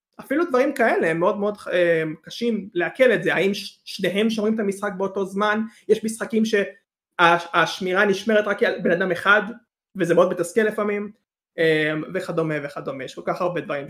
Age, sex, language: 20-39, male, Hebrew